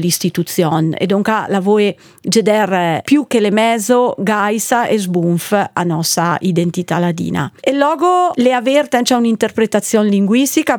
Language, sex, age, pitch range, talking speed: Italian, female, 40-59, 175-230 Hz, 135 wpm